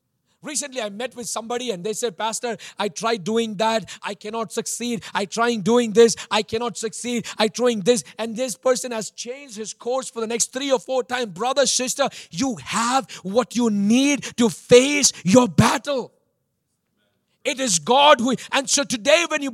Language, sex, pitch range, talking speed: English, male, 220-310 Hz, 185 wpm